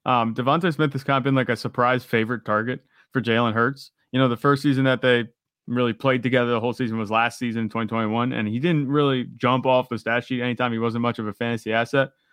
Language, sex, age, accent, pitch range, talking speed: English, male, 30-49, American, 115-135 Hz, 240 wpm